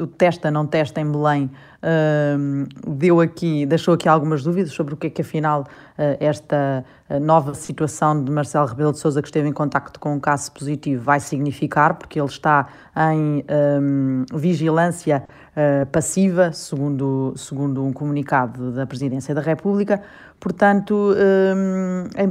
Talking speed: 135 wpm